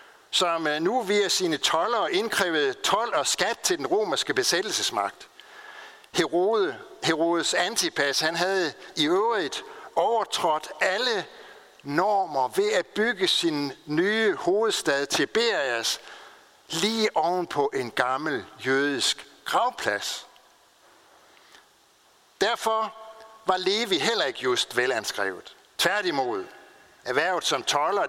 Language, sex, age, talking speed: Danish, male, 60-79, 100 wpm